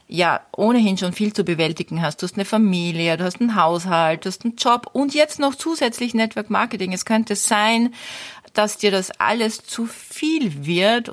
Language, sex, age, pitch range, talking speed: German, female, 40-59, 160-205 Hz, 190 wpm